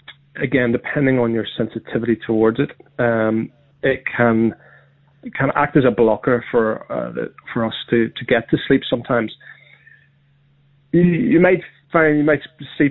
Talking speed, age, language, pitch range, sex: 160 wpm, 30-49, English, 115-140 Hz, male